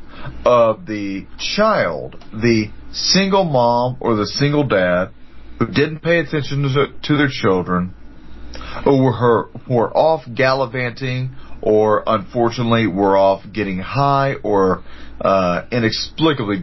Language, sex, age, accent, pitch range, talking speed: English, male, 40-59, American, 95-135 Hz, 105 wpm